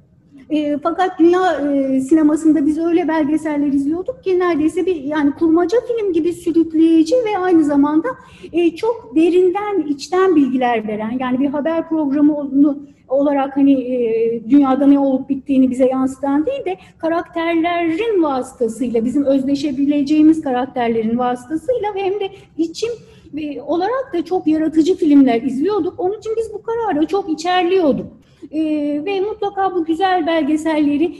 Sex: female